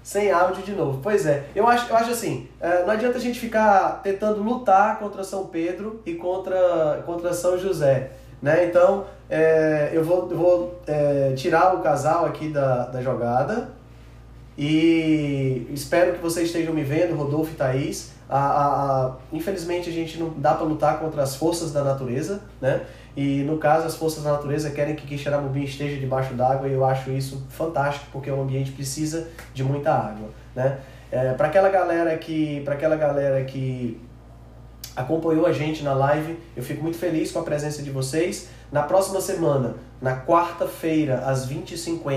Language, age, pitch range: Portuguese, 20-39, 135-170 Hz